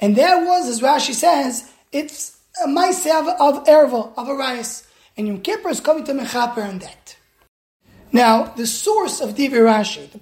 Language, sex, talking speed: English, male, 180 wpm